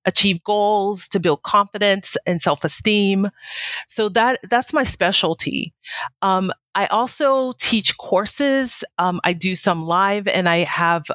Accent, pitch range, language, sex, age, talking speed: American, 170-215 Hz, English, female, 40-59, 135 wpm